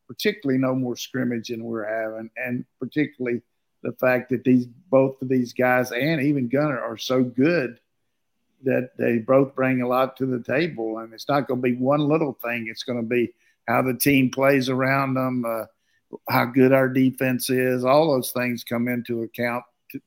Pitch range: 120-135 Hz